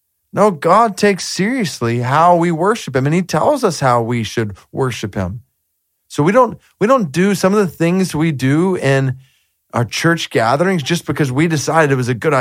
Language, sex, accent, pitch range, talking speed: English, male, American, 125-170 Hz, 195 wpm